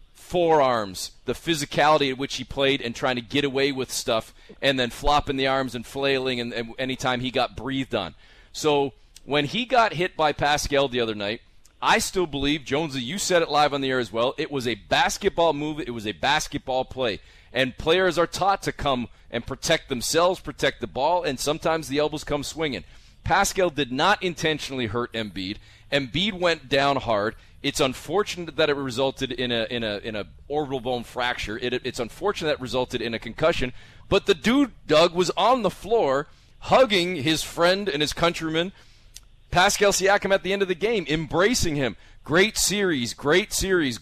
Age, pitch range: 40-59, 125-170 Hz